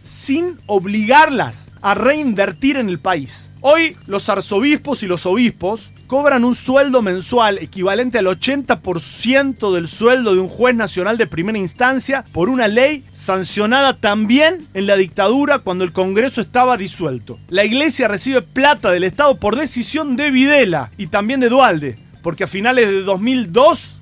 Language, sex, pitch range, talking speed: Spanish, male, 190-265 Hz, 150 wpm